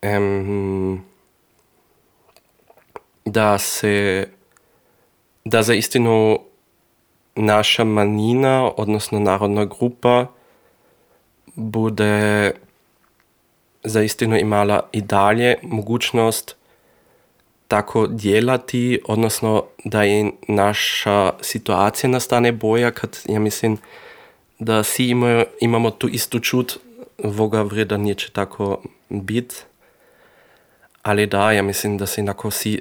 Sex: male